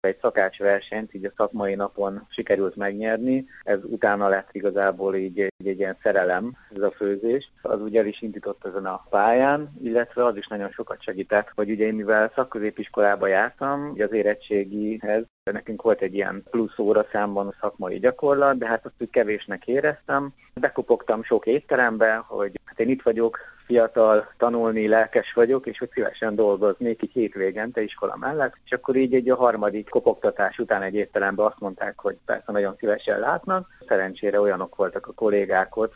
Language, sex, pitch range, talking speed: Hungarian, male, 100-115 Hz, 165 wpm